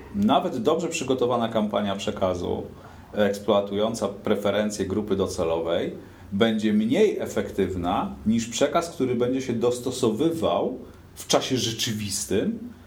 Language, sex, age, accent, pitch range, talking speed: Polish, male, 40-59, native, 95-130 Hz, 100 wpm